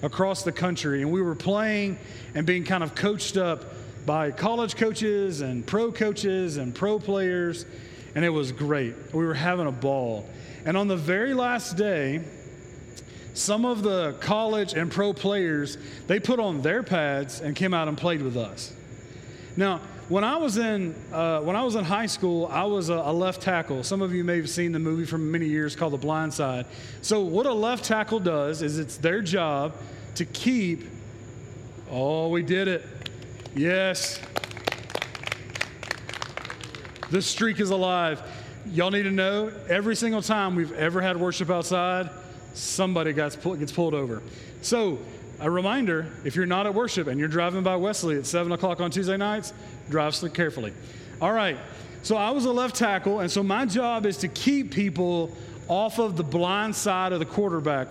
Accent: American